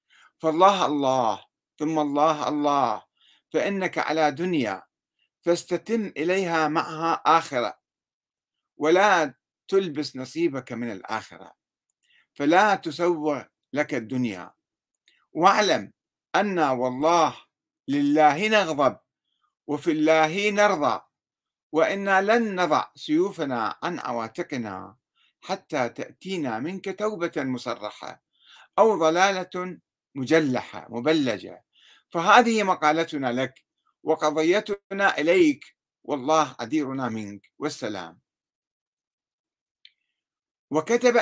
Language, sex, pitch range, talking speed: Arabic, male, 130-190 Hz, 80 wpm